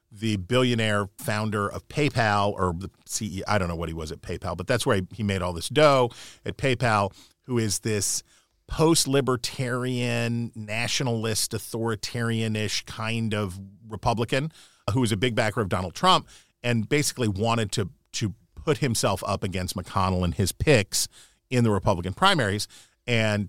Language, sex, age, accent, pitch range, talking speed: English, male, 40-59, American, 100-120 Hz, 155 wpm